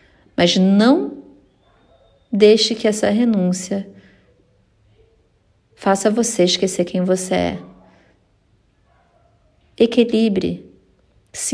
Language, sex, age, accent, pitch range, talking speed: Portuguese, female, 40-59, Brazilian, 180-235 Hz, 75 wpm